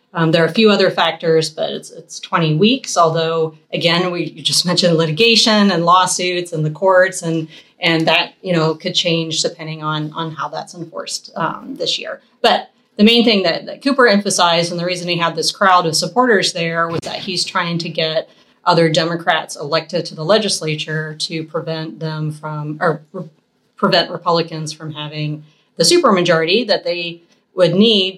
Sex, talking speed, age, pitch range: female, 185 wpm, 30-49, 160-185 Hz